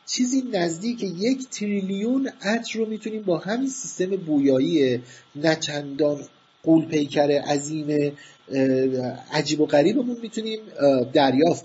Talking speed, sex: 100 wpm, male